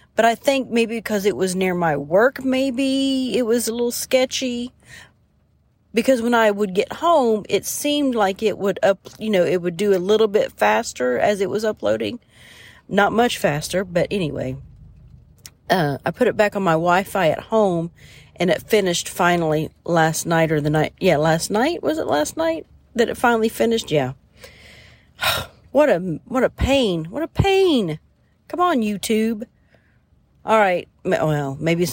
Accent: American